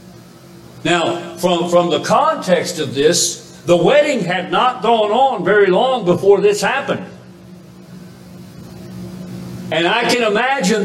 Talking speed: 120 wpm